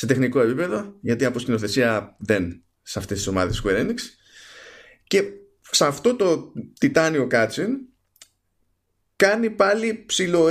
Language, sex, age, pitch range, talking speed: Greek, male, 20-39, 110-185 Hz, 125 wpm